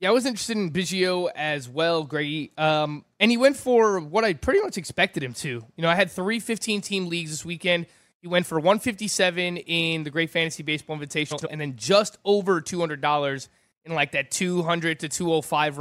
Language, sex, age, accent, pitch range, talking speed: English, male, 20-39, American, 155-190 Hz, 195 wpm